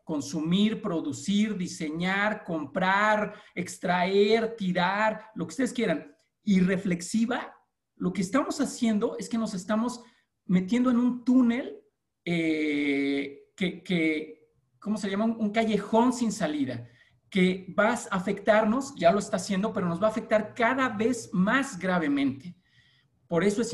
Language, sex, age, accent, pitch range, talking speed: Spanish, male, 40-59, Mexican, 170-220 Hz, 135 wpm